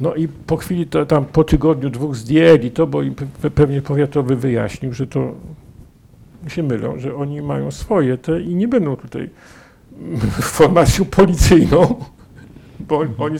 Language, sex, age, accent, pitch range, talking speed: Polish, male, 50-69, native, 135-175 Hz, 145 wpm